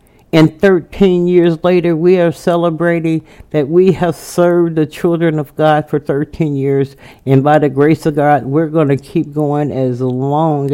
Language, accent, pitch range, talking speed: English, American, 135-170 Hz, 175 wpm